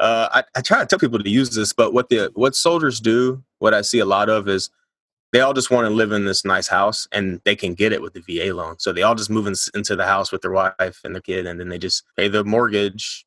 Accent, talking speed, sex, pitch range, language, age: American, 295 wpm, male, 95-115 Hz, English, 20-39